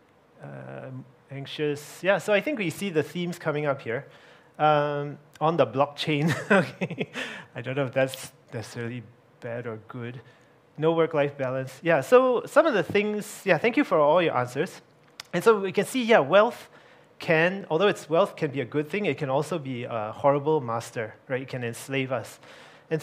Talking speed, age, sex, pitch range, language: 185 wpm, 30-49, male, 135-170 Hz, English